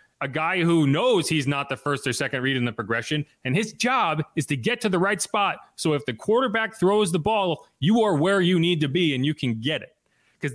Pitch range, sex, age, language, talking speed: 125-185 Hz, male, 30-49, English, 250 wpm